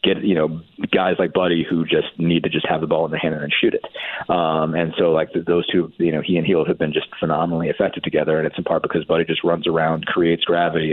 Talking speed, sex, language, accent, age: 275 wpm, male, English, American, 30-49